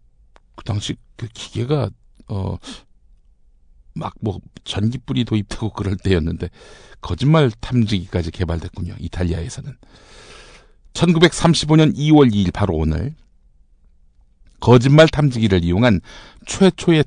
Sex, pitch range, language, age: male, 95-145 Hz, Korean, 60-79